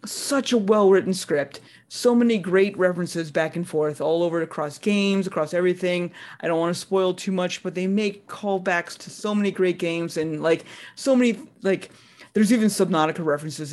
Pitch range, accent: 155-195 Hz, American